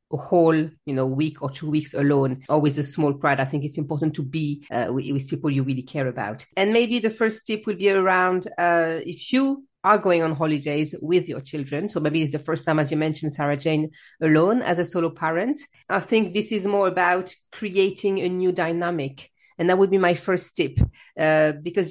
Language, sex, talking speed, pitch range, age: English, female, 220 wpm, 160-195 Hz, 40-59